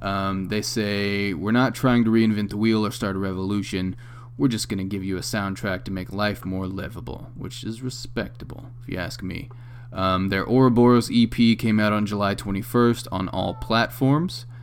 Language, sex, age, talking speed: English, male, 20-39, 190 wpm